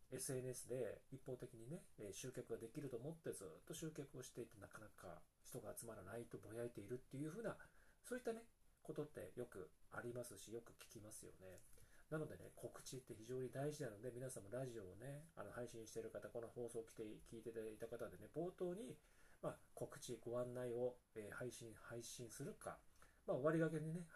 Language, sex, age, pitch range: Japanese, male, 40-59, 115-155 Hz